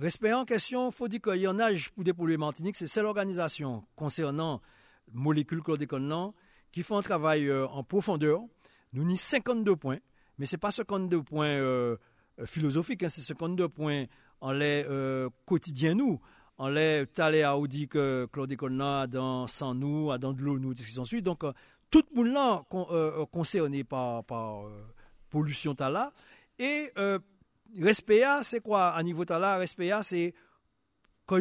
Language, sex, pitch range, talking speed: French, male, 140-190 Hz, 160 wpm